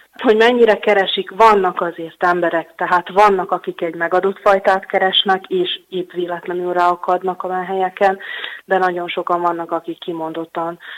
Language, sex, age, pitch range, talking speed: Hungarian, female, 30-49, 165-190 Hz, 135 wpm